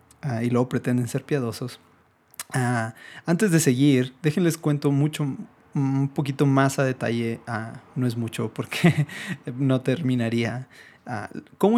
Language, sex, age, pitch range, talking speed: Spanish, male, 30-49, 120-150 Hz, 140 wpm